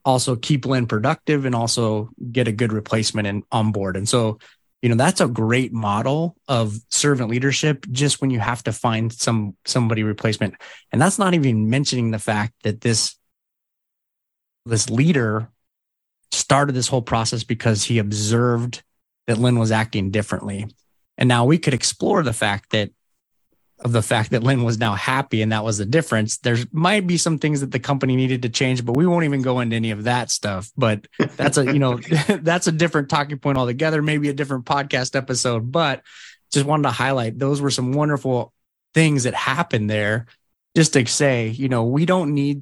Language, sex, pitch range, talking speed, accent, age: English, male, 115-145 Hz, 190 wpm, American, 30-49